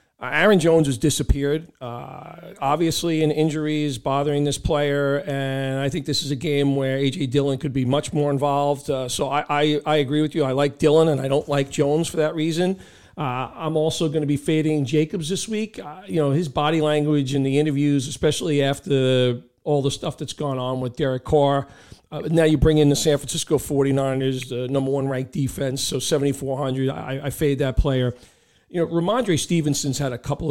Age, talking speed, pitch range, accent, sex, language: 40-59, 205 wpm, 140-165 Hz, American, male, English